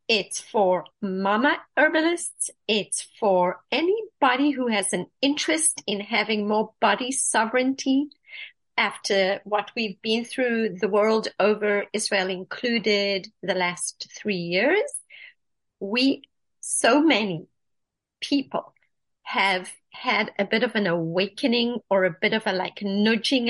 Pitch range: 200-275 Hz